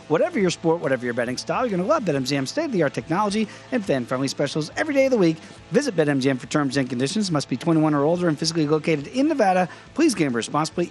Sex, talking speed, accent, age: male, 225 wpm, American, 40-59